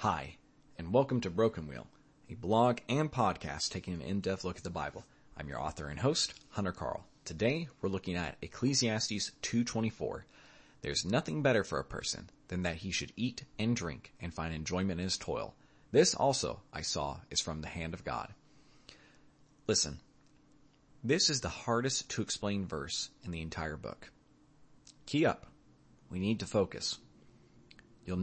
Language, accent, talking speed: English, American, 165 wpm